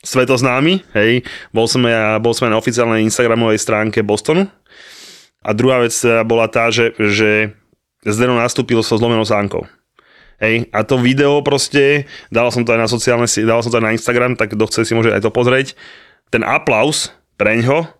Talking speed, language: 175 wpm, Slovak